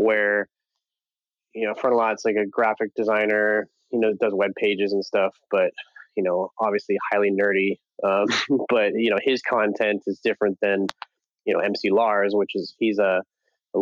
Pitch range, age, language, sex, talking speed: 95-110 Hz, 20-39, English, male, 185 wpm